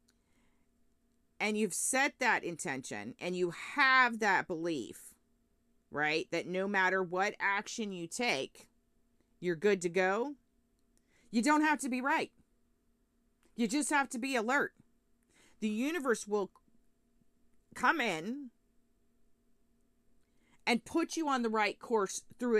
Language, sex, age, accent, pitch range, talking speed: English, female, 40-59, American, 195-285 Hz, 125 wpm